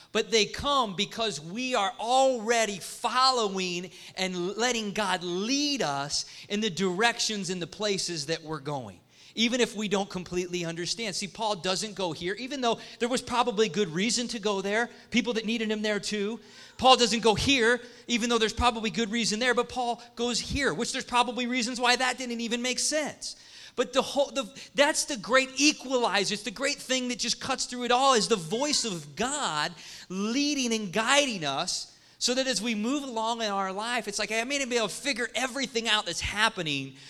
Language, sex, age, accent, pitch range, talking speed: English, male, 40-59, American, 170-245 Hz, 200 wpm